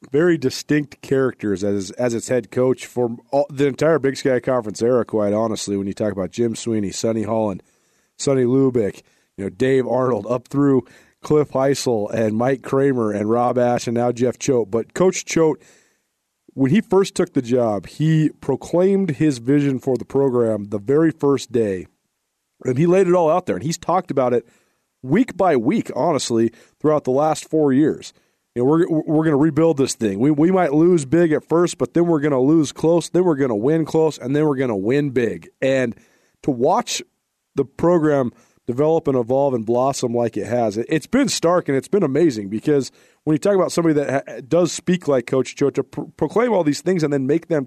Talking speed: 210 wpm